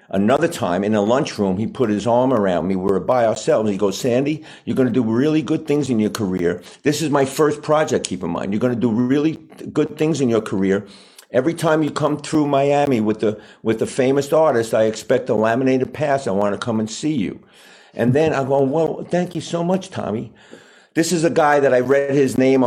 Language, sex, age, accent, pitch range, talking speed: English, male, 50-69, American, 115-150 Hz, 235 wpm